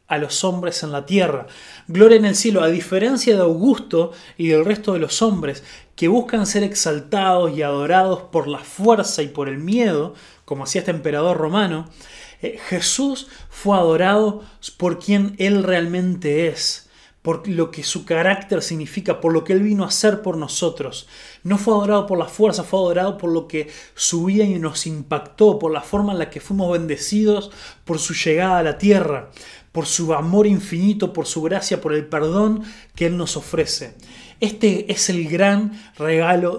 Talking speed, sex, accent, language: 180 wpm, male, Argentinian, Spanish